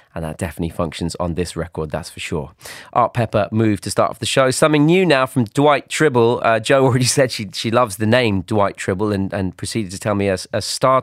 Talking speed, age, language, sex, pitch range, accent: 240 wpm, 30-49, French, male, 95-125 Hz, British